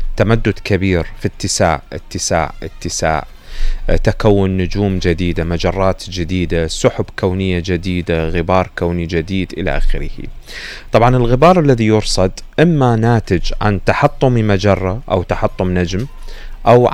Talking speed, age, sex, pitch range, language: 115 wpm, 30-49, male, 90-115 Hz, Arabic